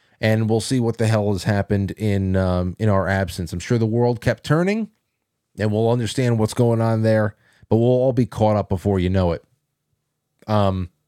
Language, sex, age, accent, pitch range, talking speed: English, male, 30-49, American, 100-130 Hz, 200 wpm